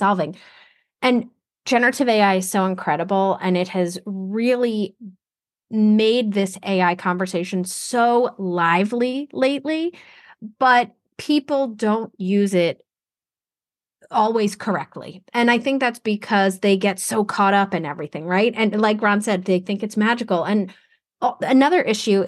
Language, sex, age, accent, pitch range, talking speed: English, female, 30-49, American, 180-240 Hz, 130 wpm